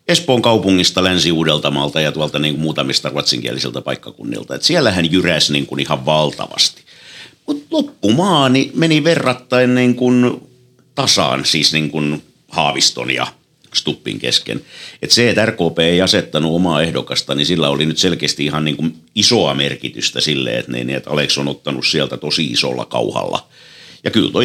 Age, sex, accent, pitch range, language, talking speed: 60-79, male, native, 75-110 Hz, Finnish, 155 wpm